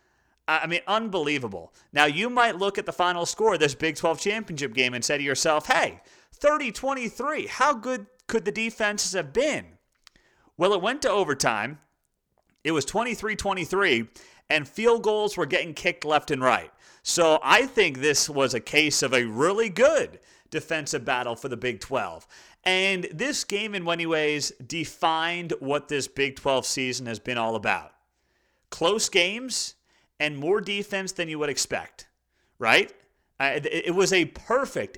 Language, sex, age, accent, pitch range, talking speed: English, male, 30-49, American, 135-190 Hz, 160 wpm